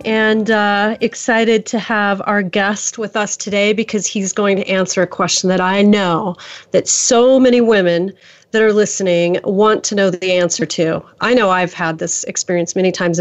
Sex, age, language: female, 30-49, English